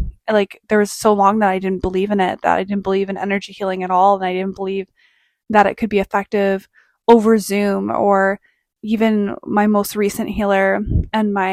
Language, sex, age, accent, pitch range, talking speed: English, female, 20-39, American, 195-220 Hz, 205 wpm